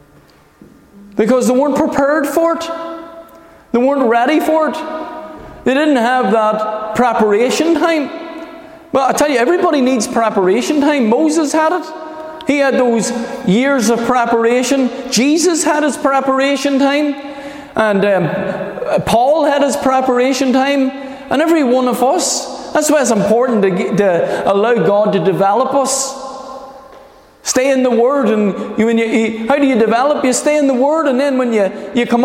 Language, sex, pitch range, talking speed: English, male, 230-285 Hz, 160 wpm